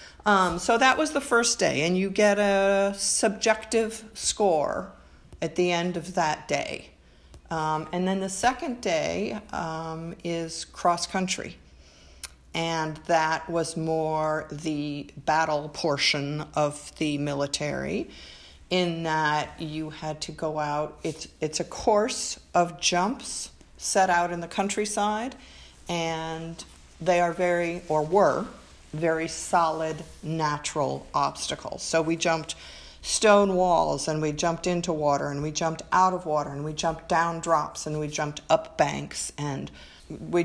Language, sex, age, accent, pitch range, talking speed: English, female, 50-69, American, 150-185 Hz, 140 wpm